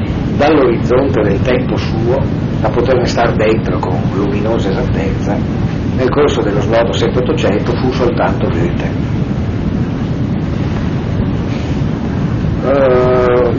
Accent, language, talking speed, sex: native, Italian, 95 wpm, male